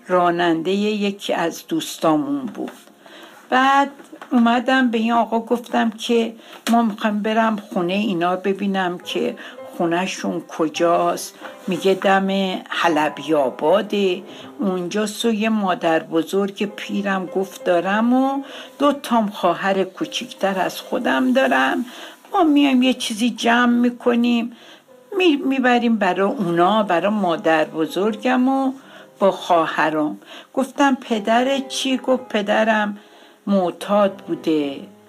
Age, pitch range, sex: 60-79, 185-250 Hz, female